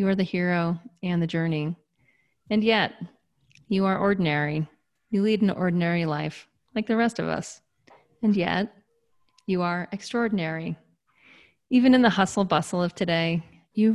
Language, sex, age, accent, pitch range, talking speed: English, female, 30-49, American, 155-200 Hz, 150 wpm